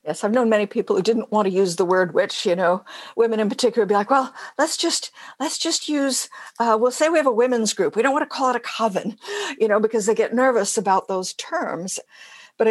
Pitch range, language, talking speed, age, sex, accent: 185-235 Hz, English, 250 wpm, 60-79, female, American